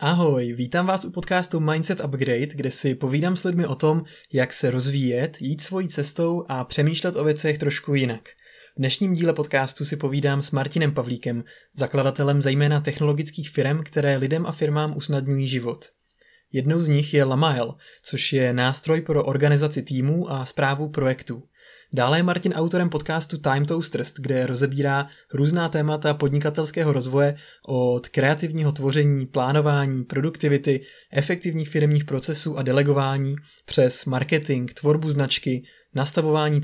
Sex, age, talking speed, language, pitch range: male, 20-39, 140 wpm, Czech, 135-155 Hz